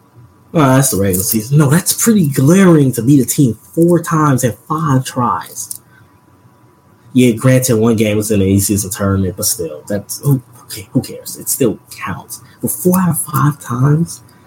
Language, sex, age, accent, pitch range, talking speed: English, male, 20-39, American, 105-145 Hz, 180 wpm